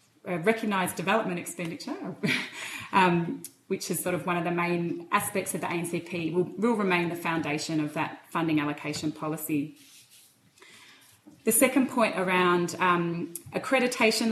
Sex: female